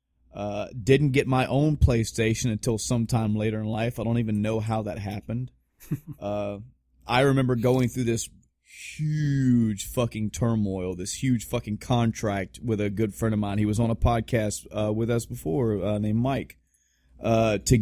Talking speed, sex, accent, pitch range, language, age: 170 wpm, male, American, 100-120 Hz, English, 30-49